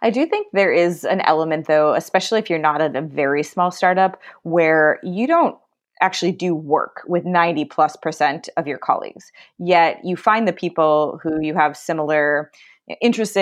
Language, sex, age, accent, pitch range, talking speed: English, female, 20-39, American, 155-190 Hz, 180 wpm